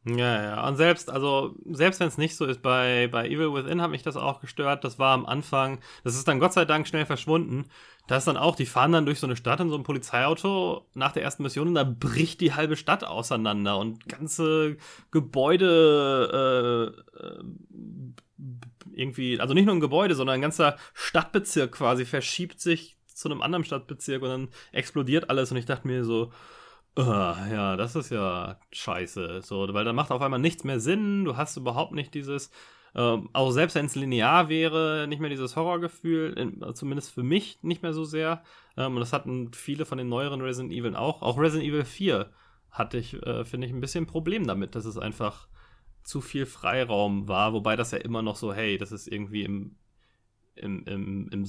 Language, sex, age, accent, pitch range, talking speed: German, male, 30-49, German, 115-160 Hz, 200 wpm